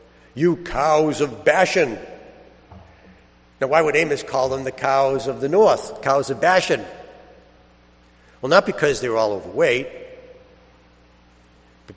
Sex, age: male, 60-79